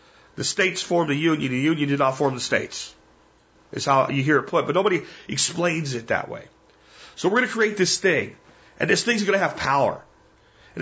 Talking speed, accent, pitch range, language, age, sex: 215 wpm, American, 135-200 Hz, English, 40-59, male